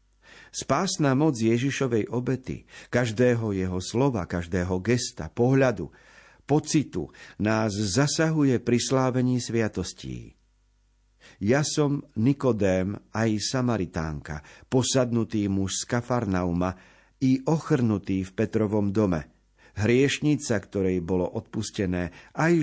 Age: 50-69